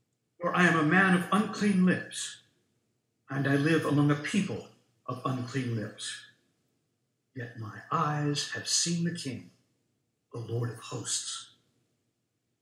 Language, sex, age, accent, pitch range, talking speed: English, male, 60-79, American, 120-170 Hz, 135 wpm